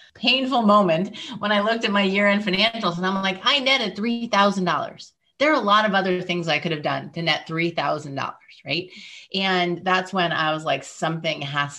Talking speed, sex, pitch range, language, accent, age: 200 wpm, female, 155-190 Hz, English, American, 30-49